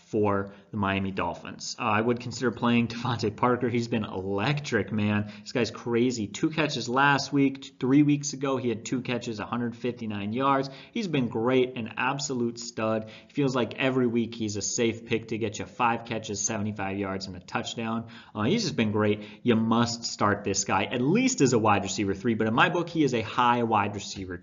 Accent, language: American, English